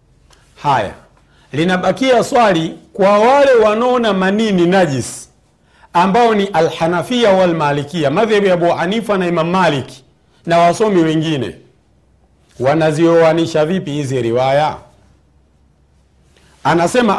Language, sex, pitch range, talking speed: Swahili, male, 115-190 Hz, 90 wpm